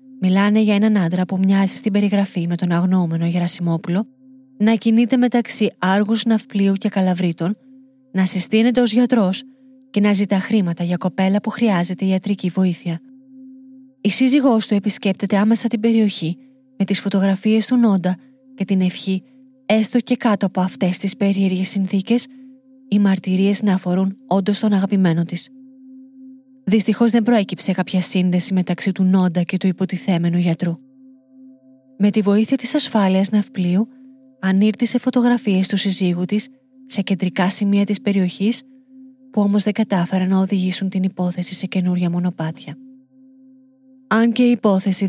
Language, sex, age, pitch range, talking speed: Greek, female, 30-49, 190-245 Hz, 140 wpm